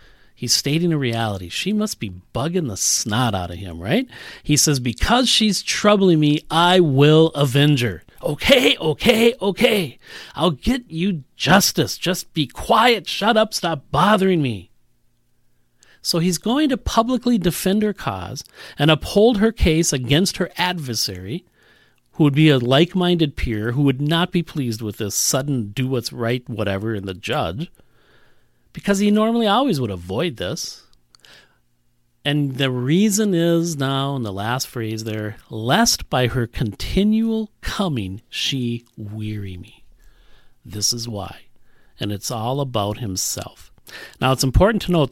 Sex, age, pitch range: male, 40-59, 115-180 Hz